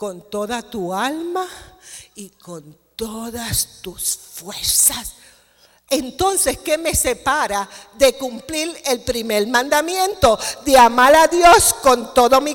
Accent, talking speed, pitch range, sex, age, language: American, 120 wpm, 250-315 Hz, female, 50-69, Spanish